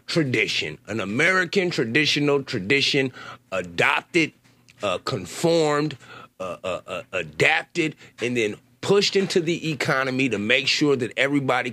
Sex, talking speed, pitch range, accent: male, 120 wpm, 125-170 Hz, American